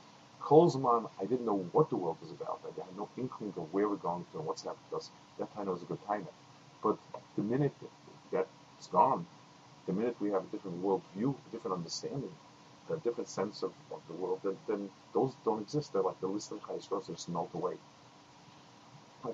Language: English